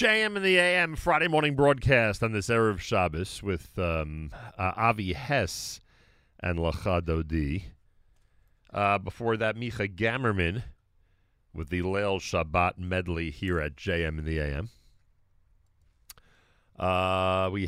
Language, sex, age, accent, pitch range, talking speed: English, male, 40-59, American, 80-110 Hz, 120 wpm